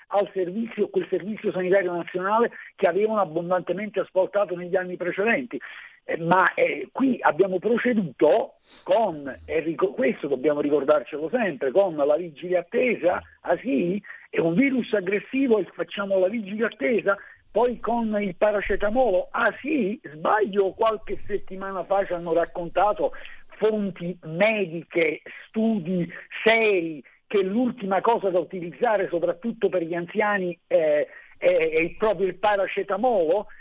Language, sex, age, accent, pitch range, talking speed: Italian, male, 50-69, native, 185-235 Hz, 125 wpm